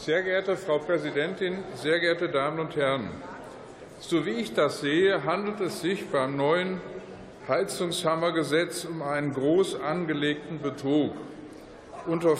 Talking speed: 125 wpm